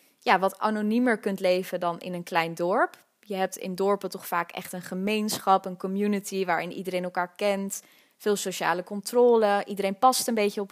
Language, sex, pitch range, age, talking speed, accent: Dutch, female, 180-205 Hz, 20-39, 185 wpm, Dutch